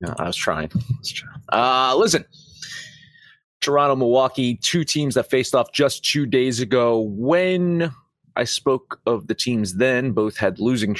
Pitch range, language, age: 125-180 Hz, English, 30-49